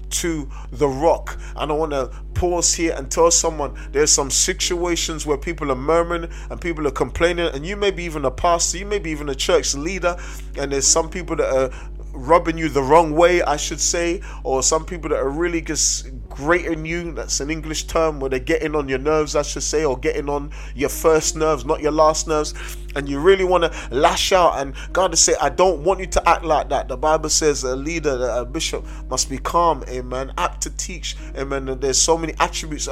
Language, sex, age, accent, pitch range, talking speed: English, male, 30-49, British, 145-170 Hz, 225 wpm